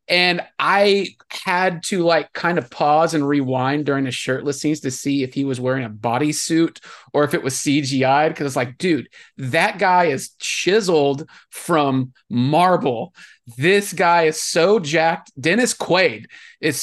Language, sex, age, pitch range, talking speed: English, male, 30-49, 130-170 Hz, 160 wpm